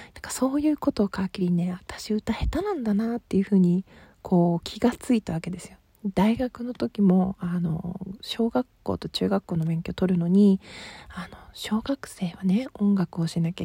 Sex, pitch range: female, 175-230 Hz